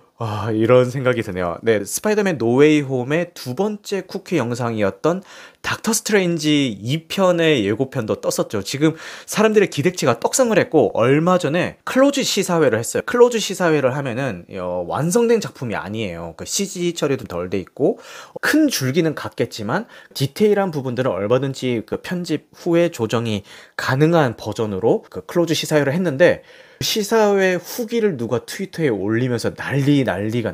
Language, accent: Korean, native